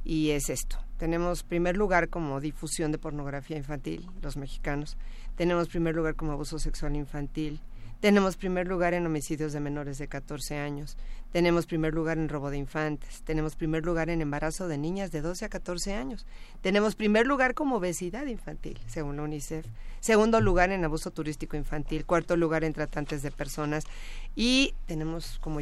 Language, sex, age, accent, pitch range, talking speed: Spanish, female, 40-59, Mexican, 155-180 Hz, 170 wpm